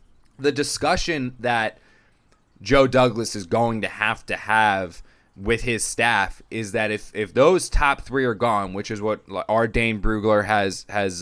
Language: English